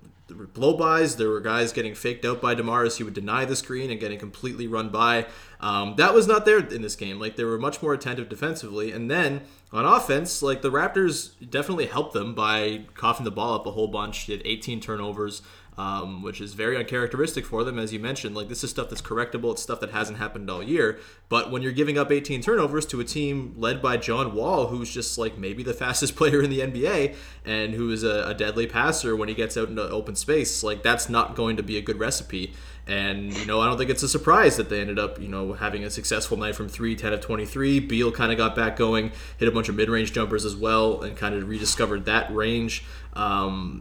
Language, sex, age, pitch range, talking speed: English, male, 20-39, 105-125 Hz, 235 wpm